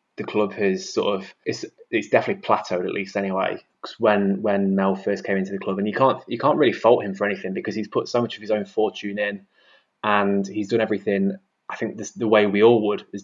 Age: 20-39